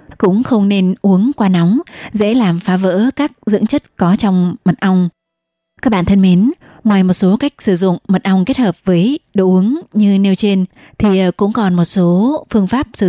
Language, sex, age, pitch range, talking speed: Vietnamese, female, 20-39, 180-215 Hz, 205 wpm